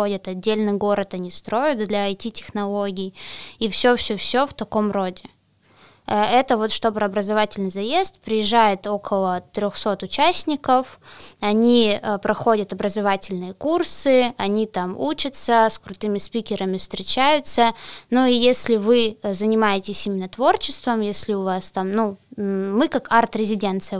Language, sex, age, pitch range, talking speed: Russian, female, 20-39, 205-245 Hz, 130 wpm